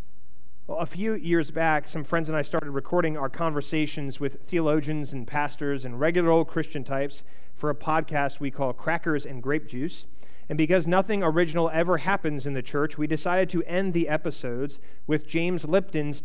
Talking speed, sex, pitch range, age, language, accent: 175 wpm, male, 140-175 Hz, 30-49, English, American